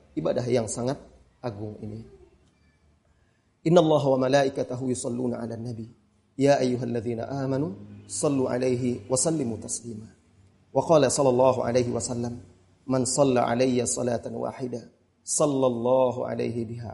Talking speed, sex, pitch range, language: 120 wpm, male, 120-150 Hz, Indonesian